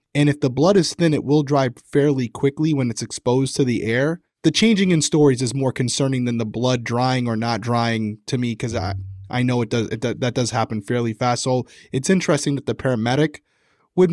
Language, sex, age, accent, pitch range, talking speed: English, male, 20-39, American, 125-150 Hz, 220 wpm